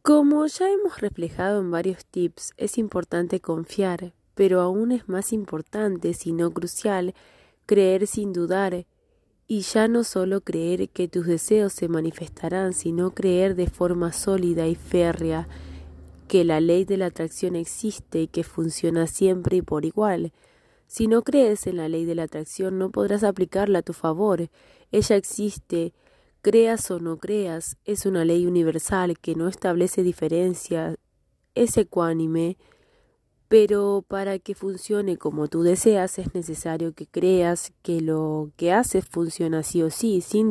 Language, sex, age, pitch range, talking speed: Spanish, female, 20-39, 165-195 Hz, 155 wpm